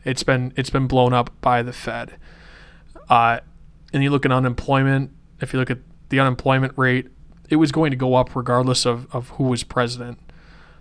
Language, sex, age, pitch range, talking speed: English, male, 20-39, 125-135 Hz, 190 wpm